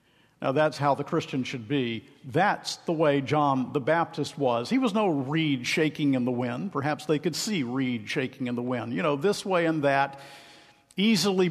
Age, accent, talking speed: 50-69, American, 200 wpm